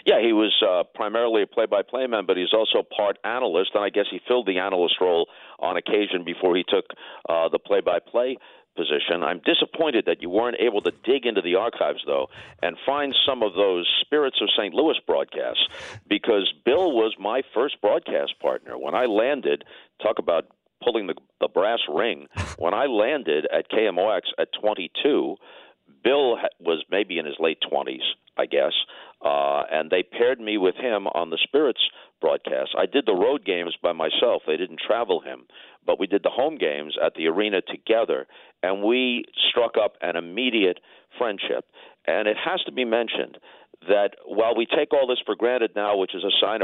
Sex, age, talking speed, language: male, 50-69, 185 wpm, English